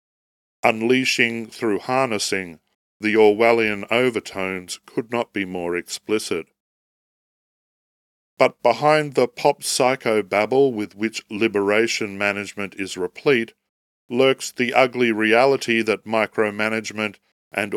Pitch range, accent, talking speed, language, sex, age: 100-120 Hz, Australian, 100 wpm, English, male, 40-59